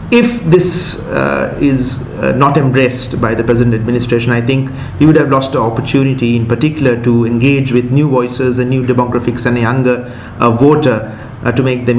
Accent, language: Indian, English